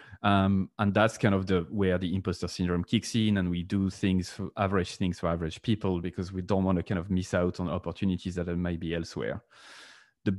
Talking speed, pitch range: 220 wpm, 90-110 Hz